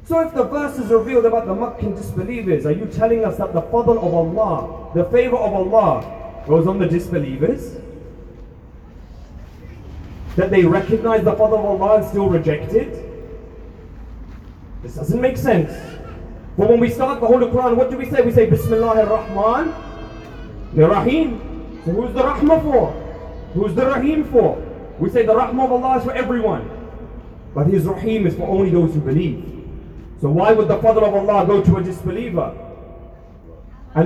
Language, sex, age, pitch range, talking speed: Urdu, male, 30-49, 160-245 Hz, 170 wpm